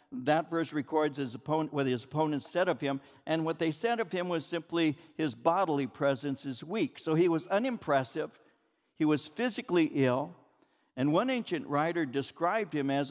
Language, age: English, 60-79